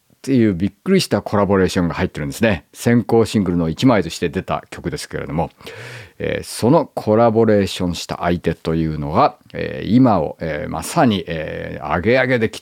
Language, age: Japanese, 50-69